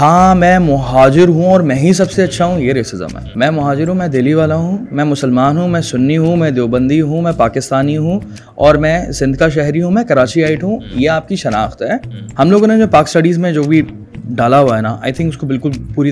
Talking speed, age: 240 wpm, 20-39